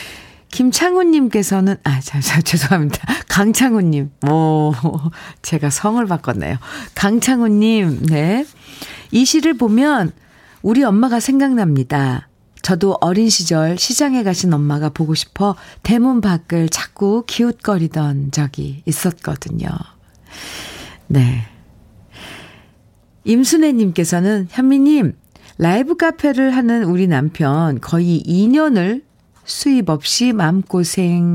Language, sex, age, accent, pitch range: Korean, female, 50-69, native, 155-225 Hz